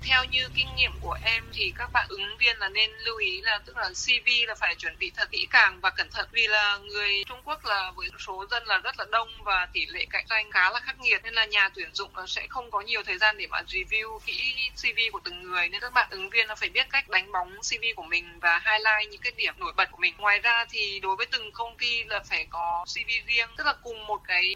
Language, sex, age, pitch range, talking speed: Vietnamese, female, 20-39, 195-245 Hz, 270 wpm